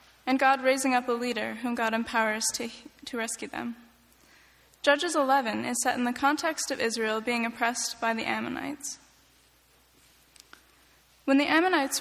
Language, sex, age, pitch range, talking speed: English, female, 10-29, 230-275 Hz, 150 wpm